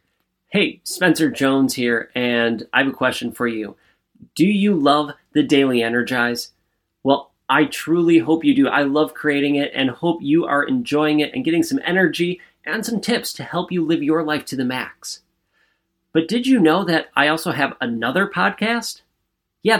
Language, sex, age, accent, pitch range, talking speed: English, male, 30-49, American, 145-195 Hz, 180 wpm